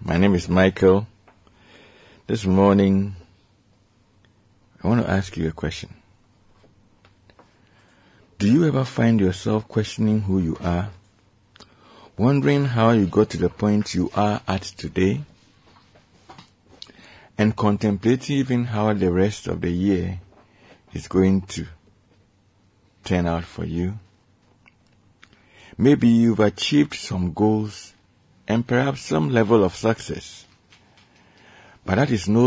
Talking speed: 115 wpm